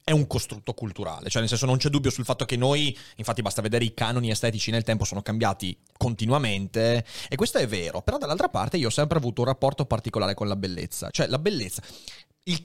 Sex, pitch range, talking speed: male, 110-150 Hz, 220 wpm